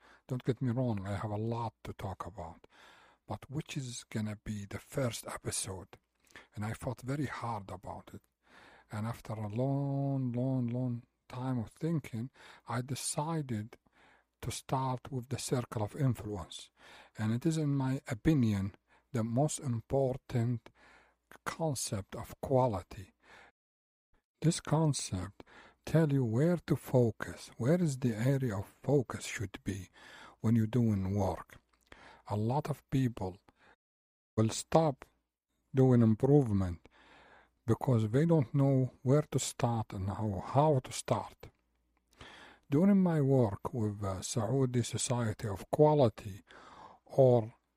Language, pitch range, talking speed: Arabic, 105-140 Hz, 135 wpm